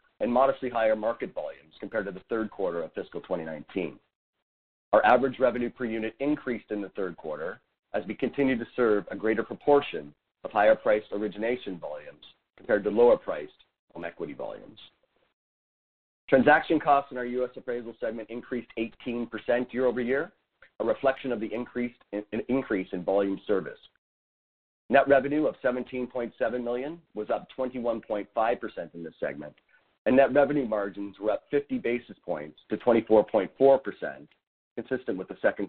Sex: male